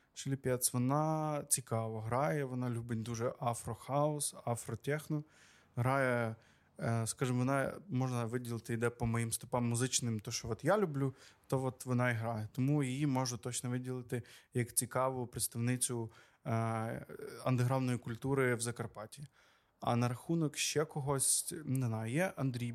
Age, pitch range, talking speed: 20-39, 120-140 Hz, 130 wpm